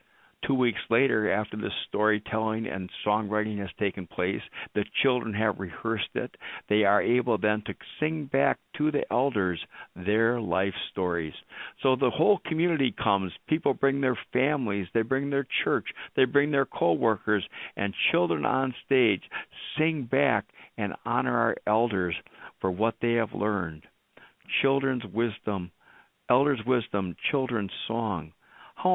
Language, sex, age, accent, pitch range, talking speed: English, male, 60-79, American, 100-130 Hz, 140 wpm